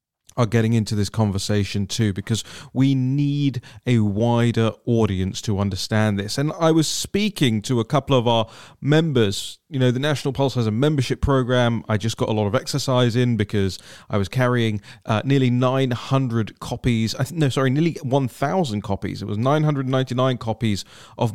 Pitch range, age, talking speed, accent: 110-145 Hz, 30-49, 170 wpm, British